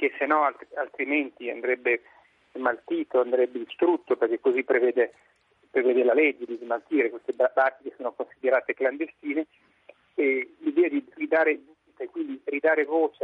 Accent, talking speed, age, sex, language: native, 145 wpm, 30-49, male, Italian